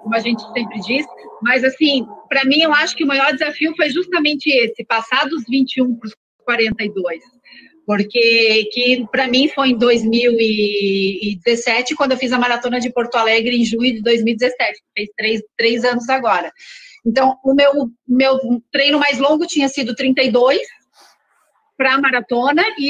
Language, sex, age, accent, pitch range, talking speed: Portuguese, female, 40-59, Brazilian, 225-285 Hz, 155 wpm